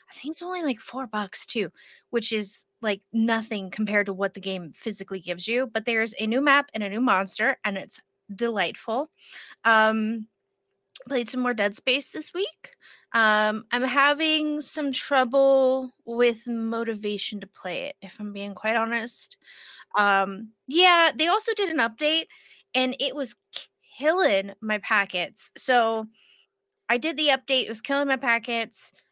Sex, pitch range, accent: female, 205-270 Hz, American